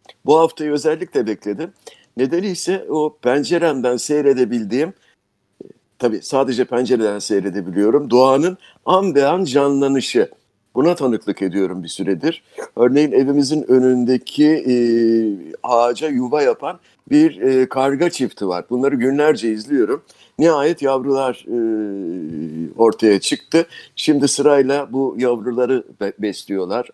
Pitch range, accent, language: 120-155 Hz, native, Turkish